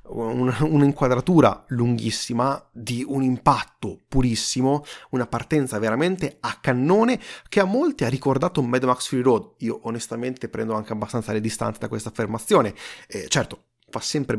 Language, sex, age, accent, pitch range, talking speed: Italian, male, 30-49, native, 110-140 Hz, 140 wpm